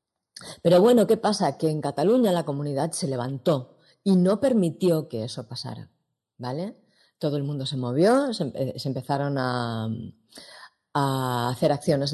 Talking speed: 150 wpm